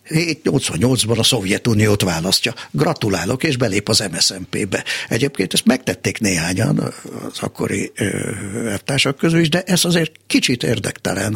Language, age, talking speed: Hungarian, 60-79, 125 wpm